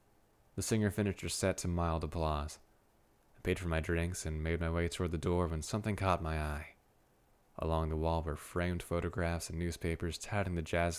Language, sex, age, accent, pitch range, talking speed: English, male, 20-39, American, 80-95 Hz, 195 wpm